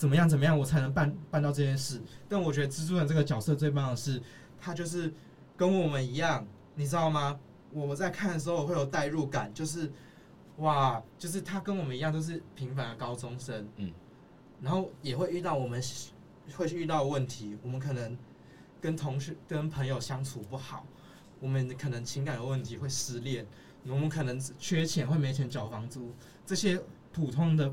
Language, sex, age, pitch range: Chinese, male, 20-39, 125-160 Hz